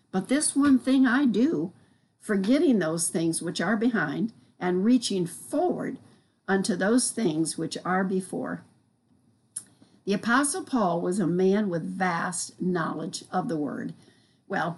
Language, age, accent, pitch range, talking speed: English, 60-79, American, 180-235 Hz, 140 wpm